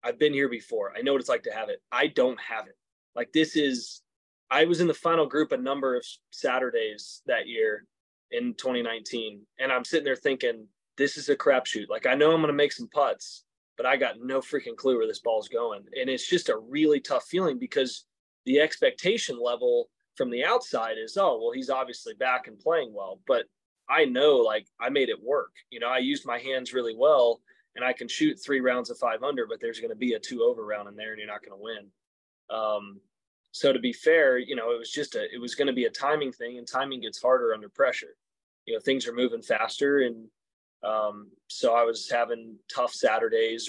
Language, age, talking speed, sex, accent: English, 20-39, 225 wpm, male, American